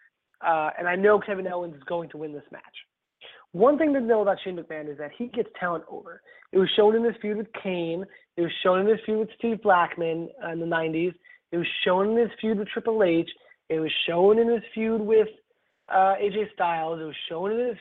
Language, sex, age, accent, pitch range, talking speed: English, male, 20-39, American, 165-210 Hz, 235 wpm